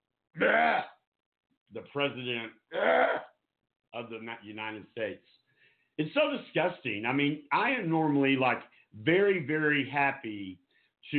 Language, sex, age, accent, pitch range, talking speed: English, male, 50-69, American, 120-155 Hz, 100 wpm